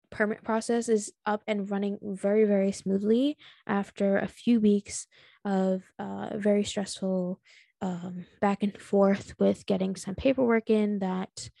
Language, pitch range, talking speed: English, 190-230 Hz, 140 wpm